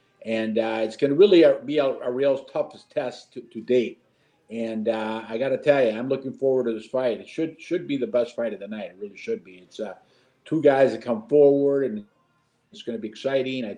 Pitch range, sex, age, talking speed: 115-140 Hz, male, 50-69, 245 wpm